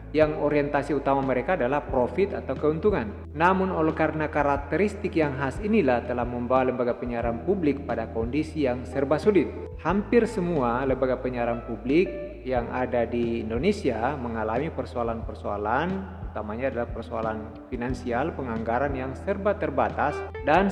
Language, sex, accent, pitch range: Indonesian, male, native, 120-155 Hz